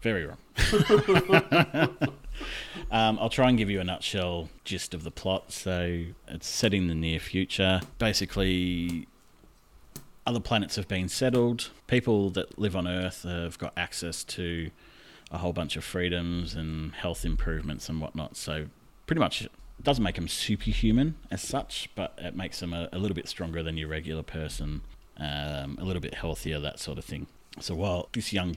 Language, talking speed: English, 170 wpm